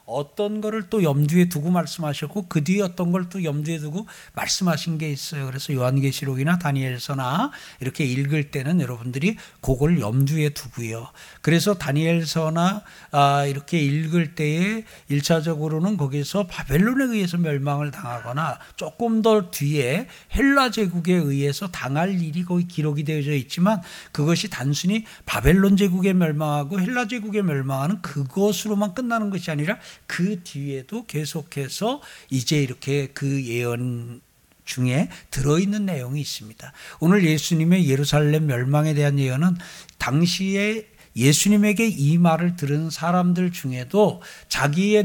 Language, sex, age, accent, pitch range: Korean, male, 60-79, native, 145-195 Hz